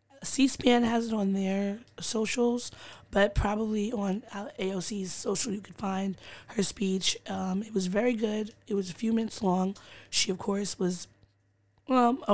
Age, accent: 20-39, American